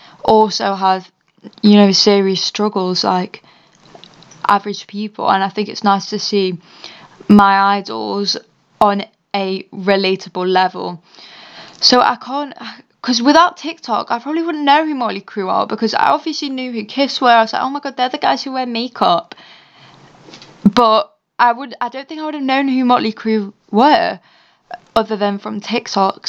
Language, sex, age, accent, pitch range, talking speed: English, female, 20-39, British, 195-235 Hz, 165 wpm